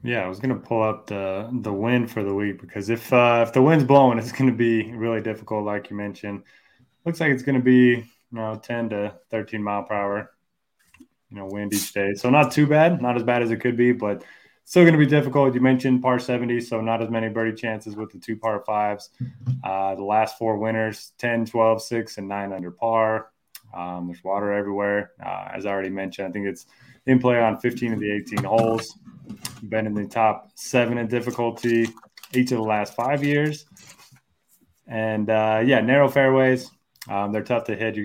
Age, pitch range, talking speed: 20-39, 100-125 Hz, 215 wpm